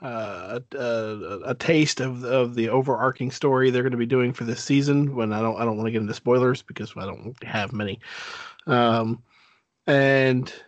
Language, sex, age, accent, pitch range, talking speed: English, male, 40-59, American, 115-130 Hz, 190 wpm